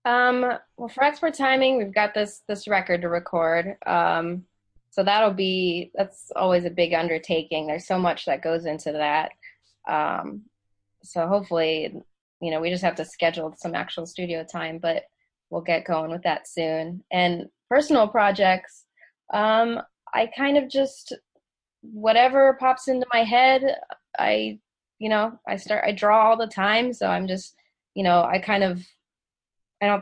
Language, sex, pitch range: English, female, 165-205 Hz